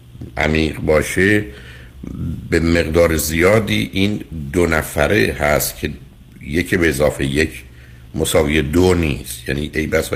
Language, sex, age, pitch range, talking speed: Persian, male, 60-79, 65-85 Hz, 125 wpm